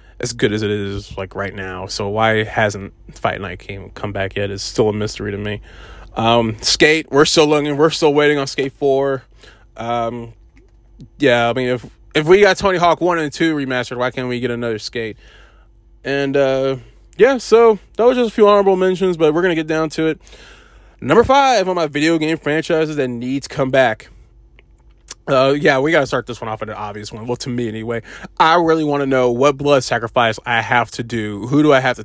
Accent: American